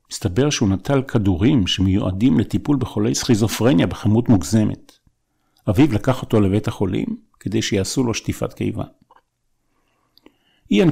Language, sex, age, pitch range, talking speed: Hebrew, male, 50-69, 100-125 Hz, 115 wpm